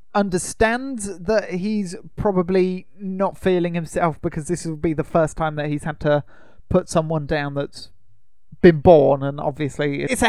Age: 30-49